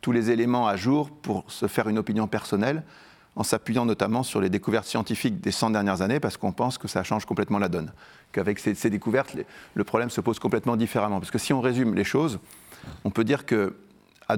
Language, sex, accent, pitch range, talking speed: French, male, French, 100-120 Hz, 220 wpm